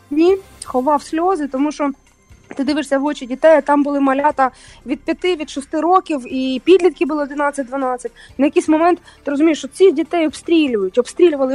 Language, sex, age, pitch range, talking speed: English, female, 20-39, 255-305 Hz, 165 wpm